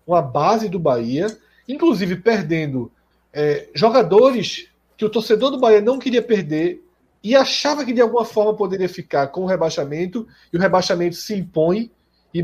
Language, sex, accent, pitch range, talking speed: Portuguese, male, Brazilian, 150-215 Hz, 155 wpm